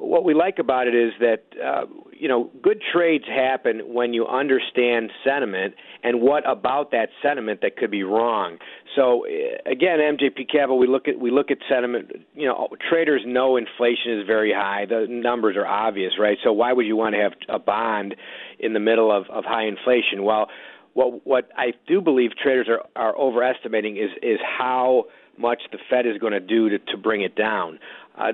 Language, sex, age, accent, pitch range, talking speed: English, male, 50-69, American, 110-135 Hz, 195 wpm